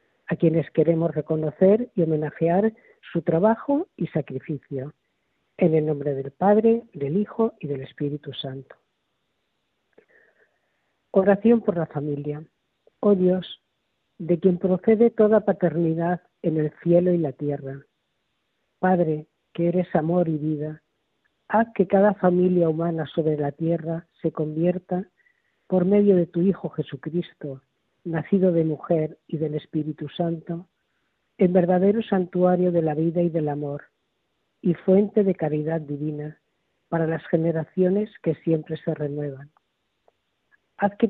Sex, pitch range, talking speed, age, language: female, 155-190 Hz, 130 wpm, 40-59, Spanish